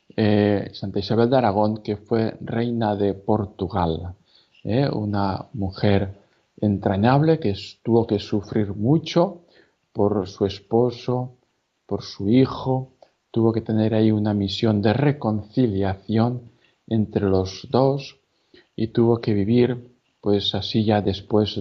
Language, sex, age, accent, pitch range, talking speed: Spanish, male, 50-69, Spanish, 100-115 Hz, 125 wpm